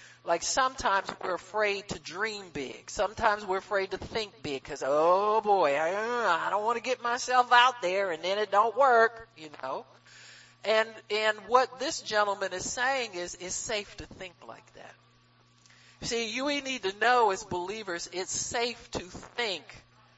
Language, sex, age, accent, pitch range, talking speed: English, male, 50-69, American, 180-235 Hz, 170 wpm